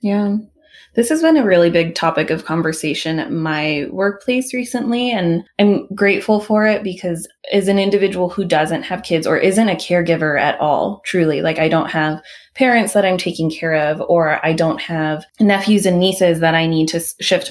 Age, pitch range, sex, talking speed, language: 20-39, 160-190 Hz, female, 190 wpm, English